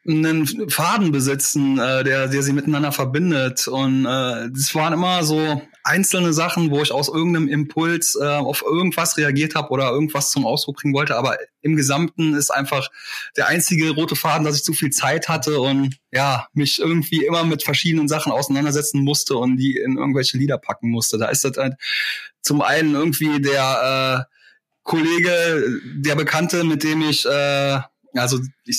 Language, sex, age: German, male, 20-39